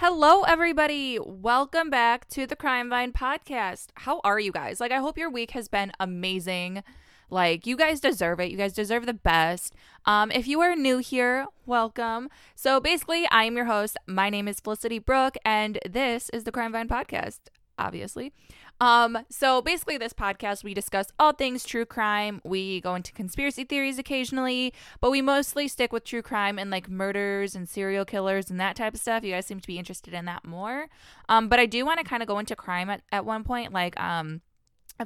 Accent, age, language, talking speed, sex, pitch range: American, 10-29, English, 205 wpm, female, 195-255 Hz